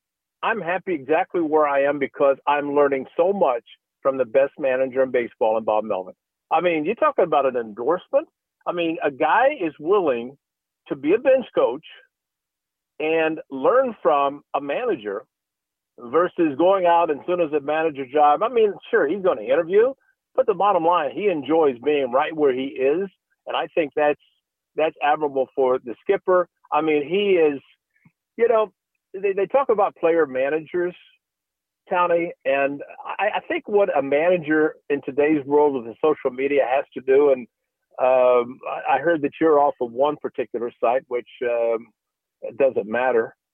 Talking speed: 170 wpm